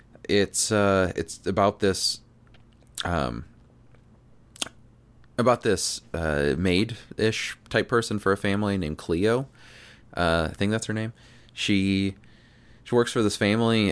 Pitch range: 80-110 Hz